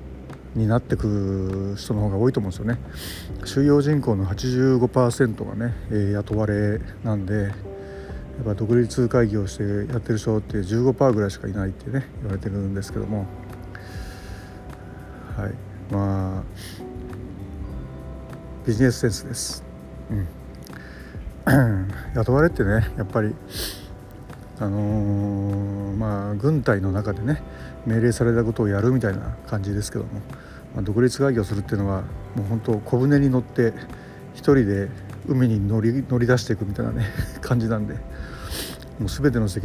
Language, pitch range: Japanese, 95-120 Hz